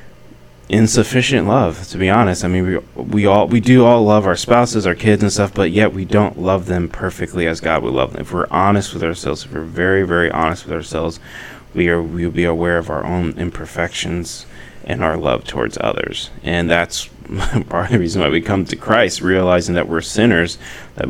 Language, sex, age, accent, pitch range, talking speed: English, male, 30-49, American, 80-95 Hz, 210 wpm